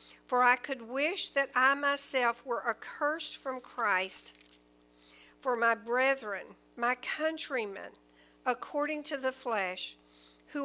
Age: 50-69